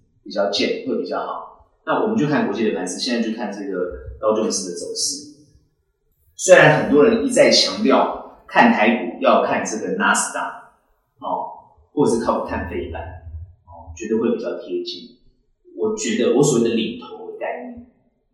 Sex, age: male, 30-49